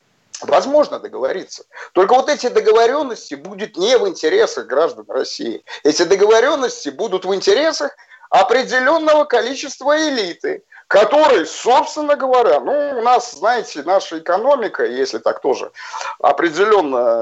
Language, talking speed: Russian, 115 wpm